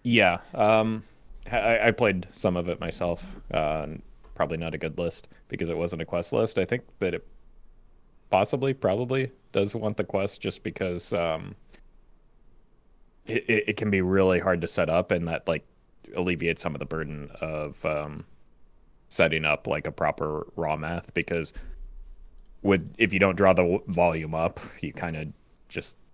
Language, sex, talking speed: English, male, 170 wpm